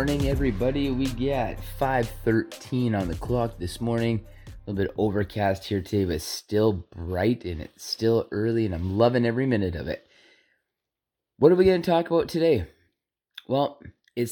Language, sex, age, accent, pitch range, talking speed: English, male, 30-49, American, 95-125 Hz, 170 wpm